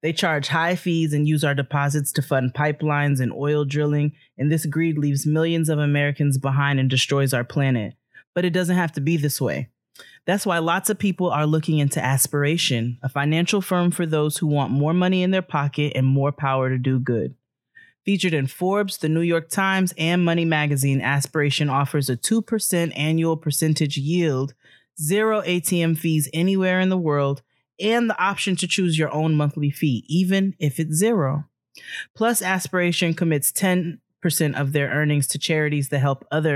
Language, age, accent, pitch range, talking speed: English, 20-39, American, 140-170 Hz, 180 wpm